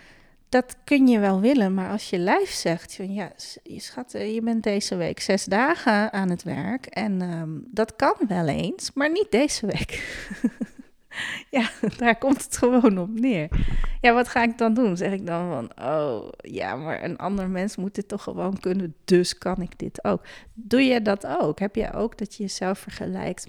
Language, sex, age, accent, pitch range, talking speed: Dutch, female, 30-49, Dutch, 170-215 Hz, 190 wpm